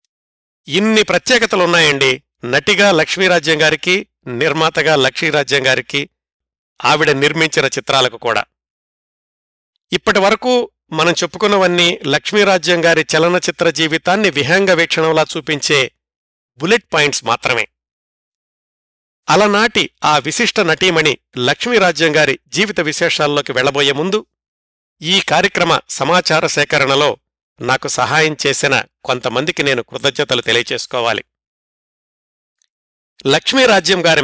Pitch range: 135-180 Hz